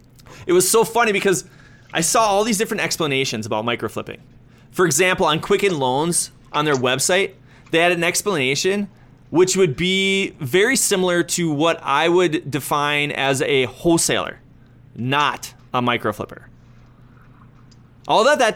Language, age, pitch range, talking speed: English, 20-39, 125-180 Hz, 140 wpm